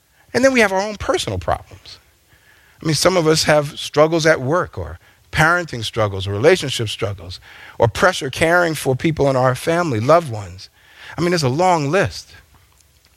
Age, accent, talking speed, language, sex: 40-59, American, 180 wpm, English, male